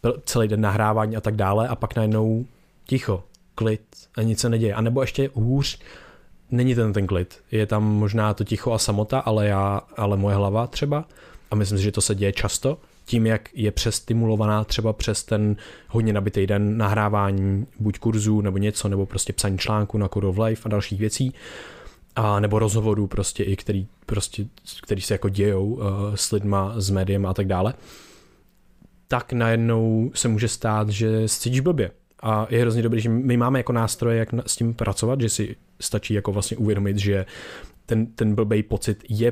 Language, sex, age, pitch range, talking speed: Czech, male, 20-39, 105-115 Hz, 185 wpm